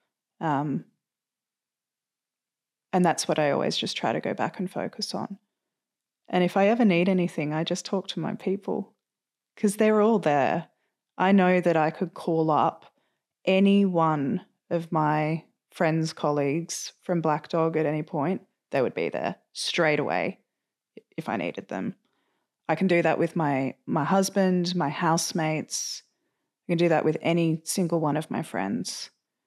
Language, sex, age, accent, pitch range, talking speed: English, female, 20-39, Australian, 155-190 Hz, 165 wpm